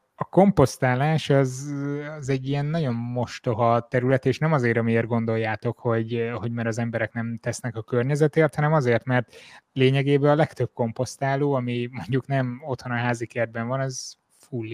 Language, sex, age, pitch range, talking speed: Hungarian, male, 20-39, 120-135 Hz, 165 wpm